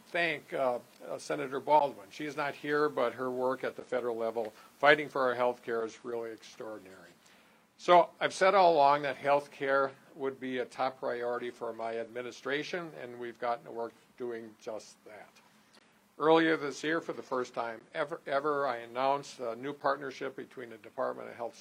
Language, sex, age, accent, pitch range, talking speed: English, male, 50-69, American, 120-145 Hz, 185 wpm